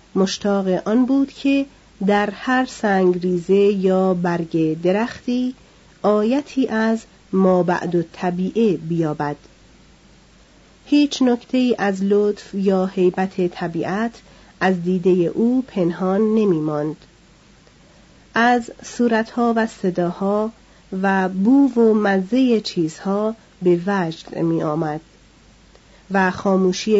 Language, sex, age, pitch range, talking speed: Persian, female, 40-59, 180-215 Hz, 100 wpm